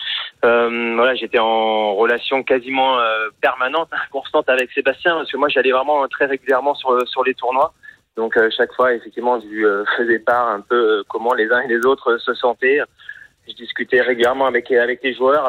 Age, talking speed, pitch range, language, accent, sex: 30-49, 180 wpm, 115-150 Hz, French, French, male